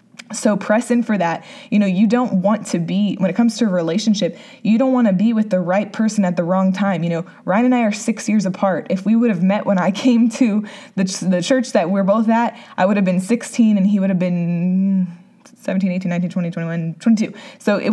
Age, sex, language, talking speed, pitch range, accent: 20-39, female, English, 250 wpm, 185-225 Hz, American